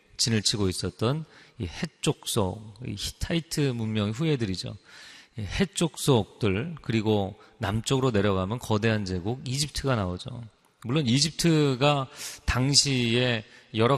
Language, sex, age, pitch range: Korean, male, 40-59, 105-135 Hz